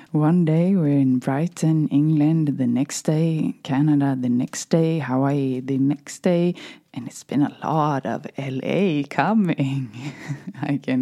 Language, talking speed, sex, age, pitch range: English, 145 wpm, female, 20-39, 135-165 Hz